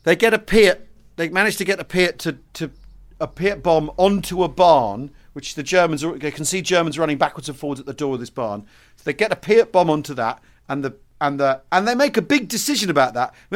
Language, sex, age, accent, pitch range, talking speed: English, male, 40-59, British, 145-195 Hz, 250 wpm